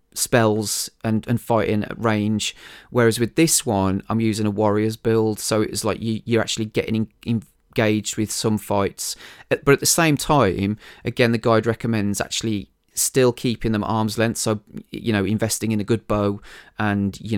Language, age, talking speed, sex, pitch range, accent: English, 30-49, 180 wpm, male, 105-130 Hz, British